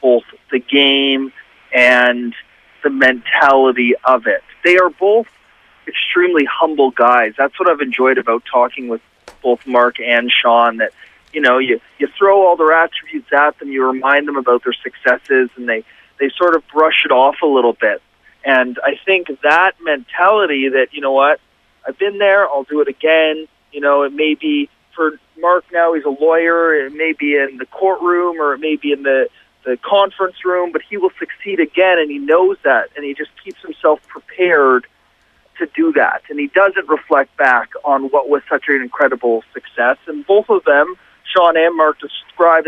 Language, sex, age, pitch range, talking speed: English, male, 30-49, 135-180 Hz, 185 wpm